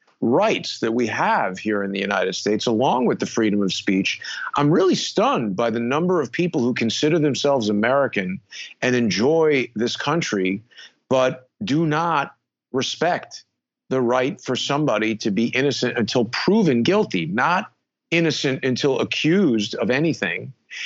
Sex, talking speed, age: male, 145 wpm, 40-59